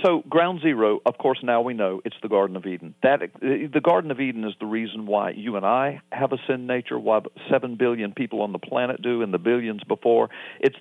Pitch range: 110-125 Hz